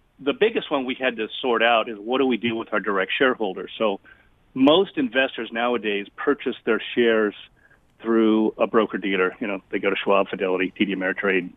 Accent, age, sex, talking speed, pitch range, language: American, 40-59, male, 190 wpm, 105-130 Hz, English